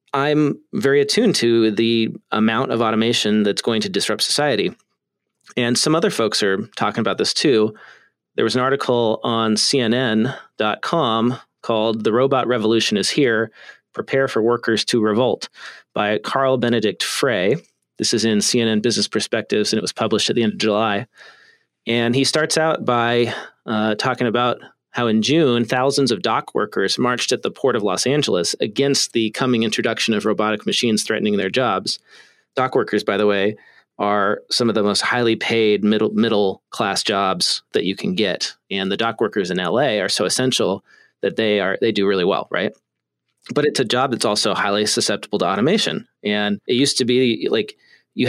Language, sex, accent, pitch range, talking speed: English, male, American, 110-130 Hz, 180 wpm